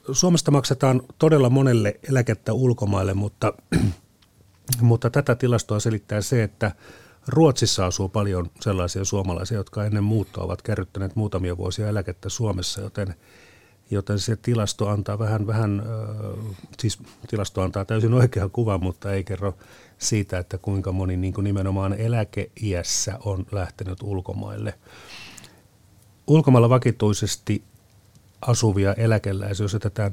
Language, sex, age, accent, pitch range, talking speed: Finnish, male, 30-49, native, 100-115 Hz, 120 wpm